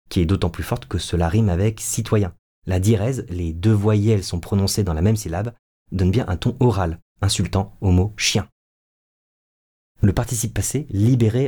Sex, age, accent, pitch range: male, 30-49, French, 95-115 Hz